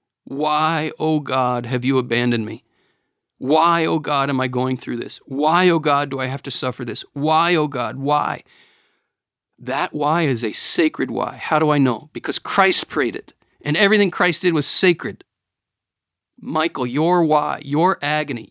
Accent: American